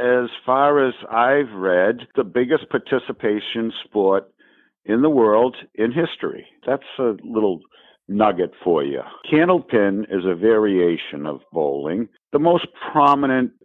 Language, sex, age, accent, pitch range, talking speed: English, male, 60-79, American, 90-125 Hz, 130 wpm